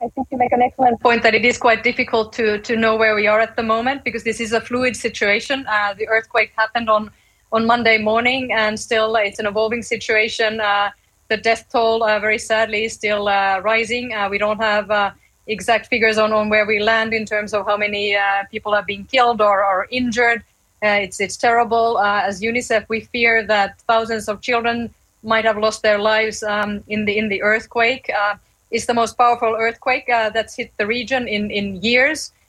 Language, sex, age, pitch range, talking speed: English, female, 30-49, 210-235 Hz, 210 wpm